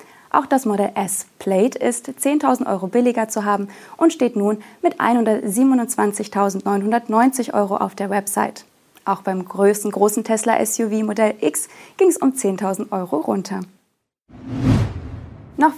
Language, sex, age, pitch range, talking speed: German, female, 20-39, 195-240 Hz, 125 wpm